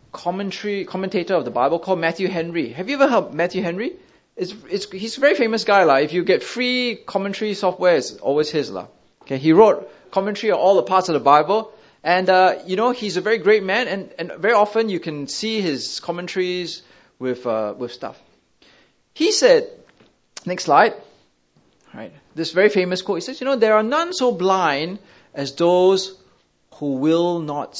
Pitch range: 140-205 Hz